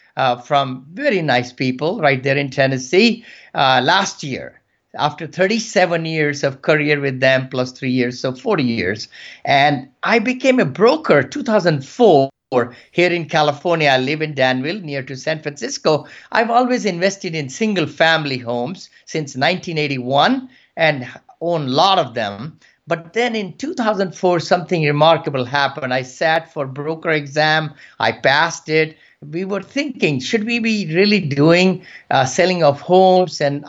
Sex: male